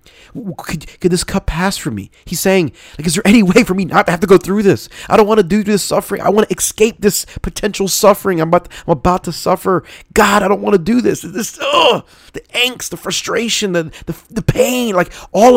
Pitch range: 120-190 Hz